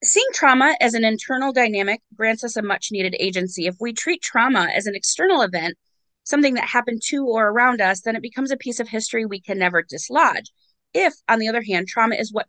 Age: 30-49